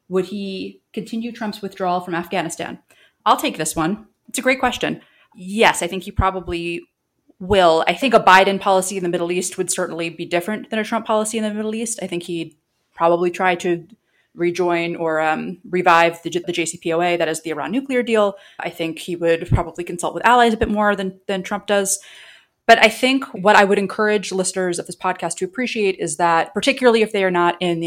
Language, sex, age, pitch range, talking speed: English, female, 30-49, 170-205 Hz, 215 wpm